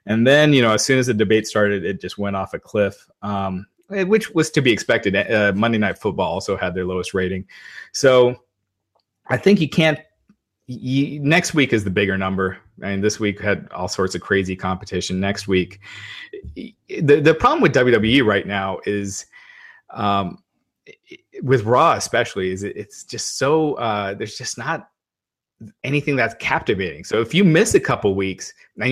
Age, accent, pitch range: 30-49, American, 100-140 Hz